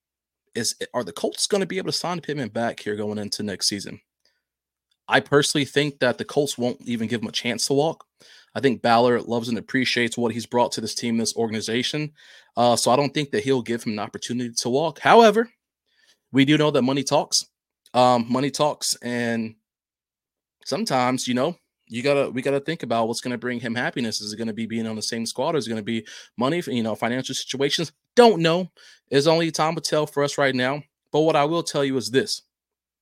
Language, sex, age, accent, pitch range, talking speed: English, male, 20-39, American, 110-145 Hz, 230 wpm